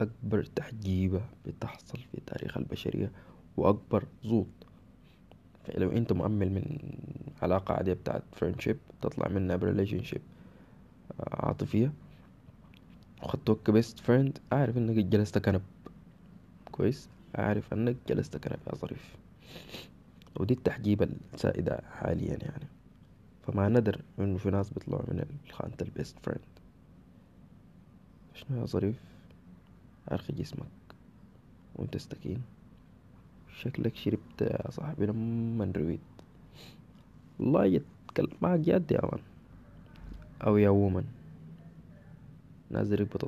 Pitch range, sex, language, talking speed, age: 95-135 Hz, male, Arabic, 100 wpm, 20-39